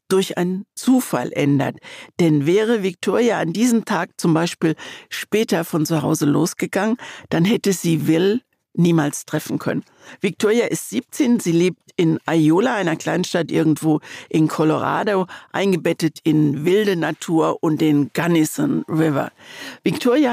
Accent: German